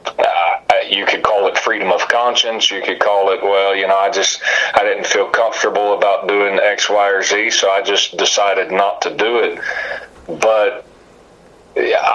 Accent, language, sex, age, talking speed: American, English, male, 40-59, 185 wpm